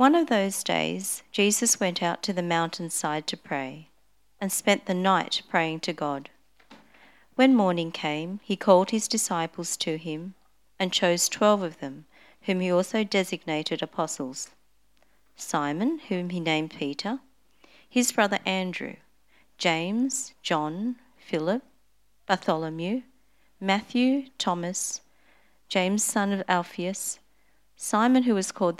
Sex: female